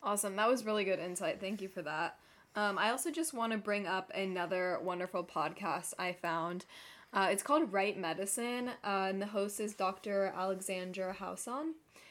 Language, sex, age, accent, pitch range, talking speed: English, female, 20-39, American, 185-230 Hz, 180 wpm